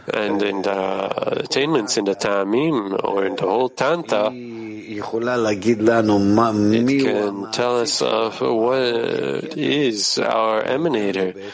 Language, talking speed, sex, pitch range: English, 110 wpm, male, 100-120 Hz